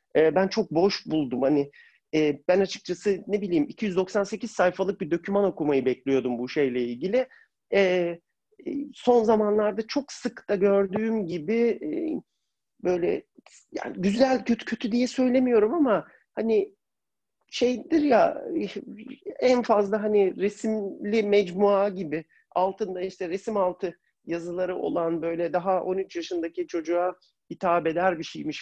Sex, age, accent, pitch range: male, 40-59, native, 155-220 Hz